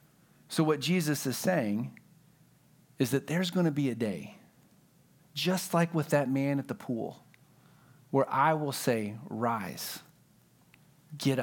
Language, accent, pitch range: English, American, 125-155 Hz